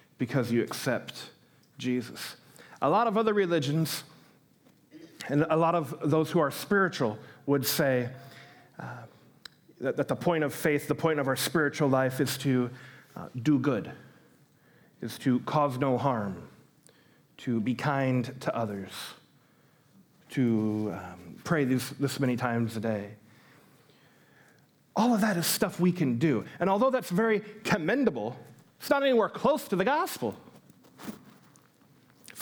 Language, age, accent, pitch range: English, 40-59, American, 125-165 Hz